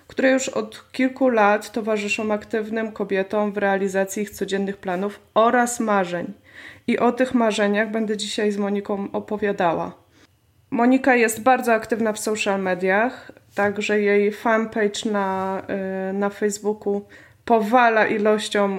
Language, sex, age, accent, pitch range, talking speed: Polish, female, 20-39, native, 200-225 Hz, 125 wpm